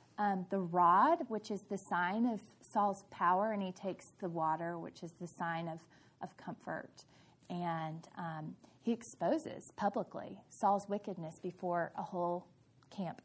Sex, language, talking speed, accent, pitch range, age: female, English, 150 wpm, American, 175-235 Hz, 30-49